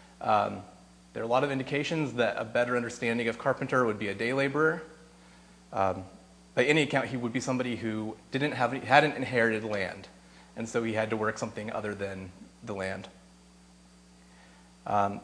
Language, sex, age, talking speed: English, male, 30-49, 175 wpm